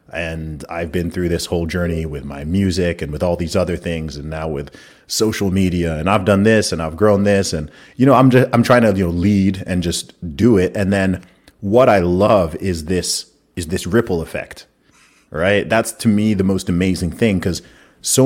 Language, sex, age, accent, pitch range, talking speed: English, male, 30-49, American, 85-105 Hz, 215 wpm